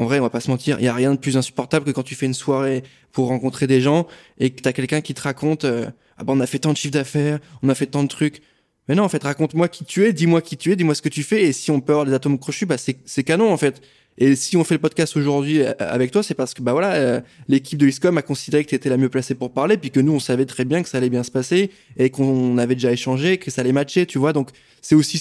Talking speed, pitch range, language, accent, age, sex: 320 wpm, 135-165 Hz, French, French, 20-39, male